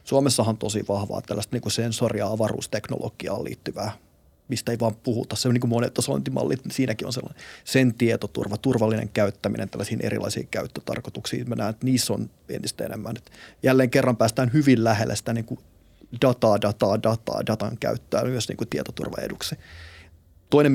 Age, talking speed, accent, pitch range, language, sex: 30-49, 155 wpm, native, 105-125 Hz, Finnish, male